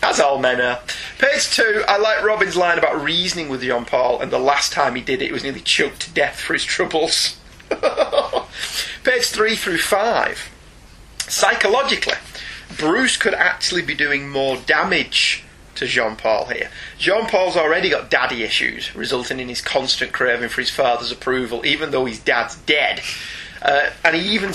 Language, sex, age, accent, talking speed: English, male, 30-49, British, 165 wpm